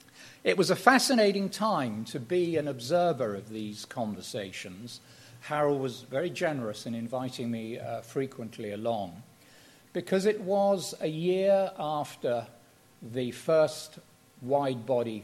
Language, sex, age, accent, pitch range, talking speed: English, male, 50-69, British, 115-155 Hz, 120 wpm